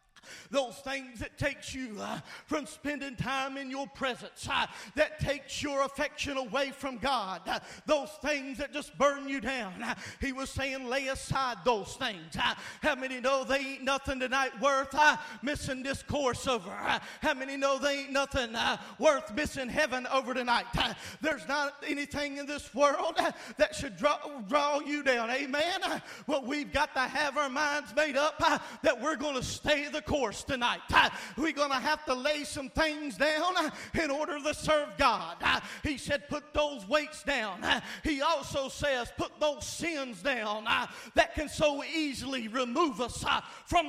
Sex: male